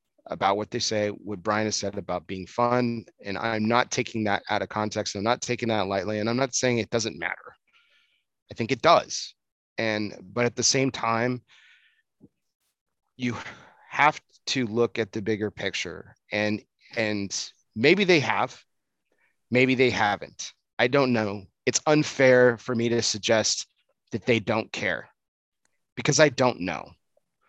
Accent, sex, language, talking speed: American, male, English, 160 wpm